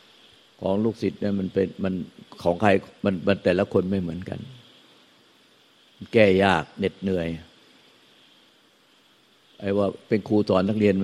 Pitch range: 90-100 Hz